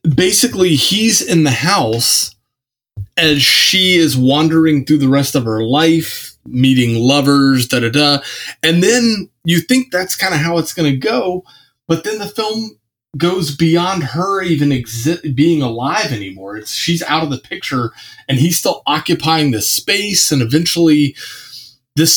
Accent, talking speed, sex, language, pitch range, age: American, 160 wpm, male, English, 120-155 Hz, 20-39